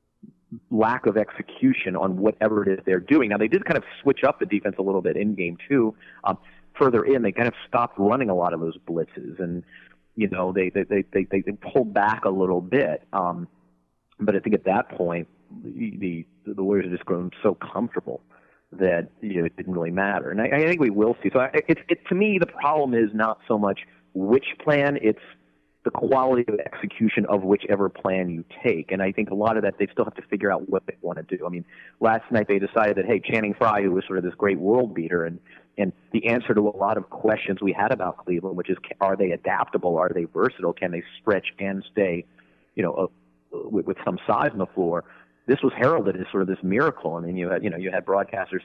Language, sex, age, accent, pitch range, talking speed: English, male, 40-59, American, 90-105 Hz, 235 wpm